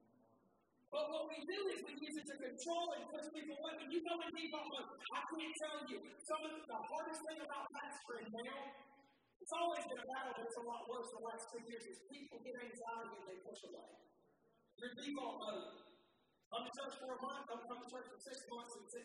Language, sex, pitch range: English, male, 235-320 Hz